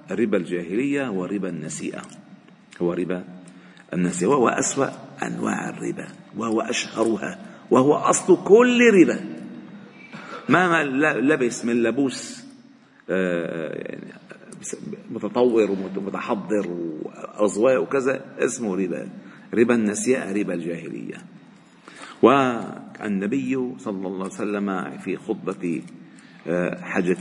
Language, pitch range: Arabic, 95-135 Hz